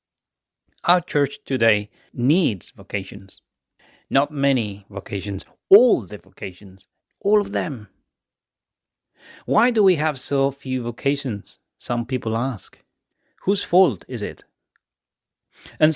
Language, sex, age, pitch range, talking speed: English, male, 40-59, 105-140 Hz, 110 wpm